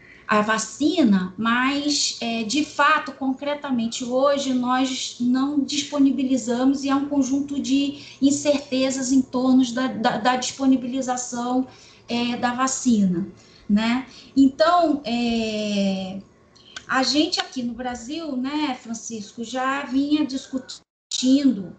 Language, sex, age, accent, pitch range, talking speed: Portuguese, female, 20-39, Brazilian, 240-275 Hz, 95 wpm